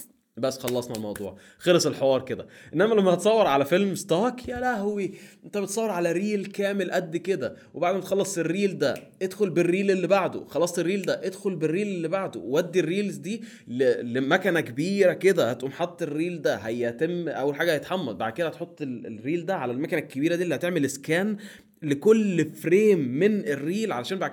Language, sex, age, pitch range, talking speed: Arabic, male, 20-39, 135-195 Hz, 170 wpm